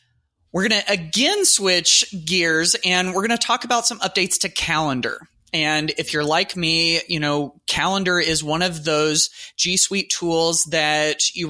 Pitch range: 145-175 Hz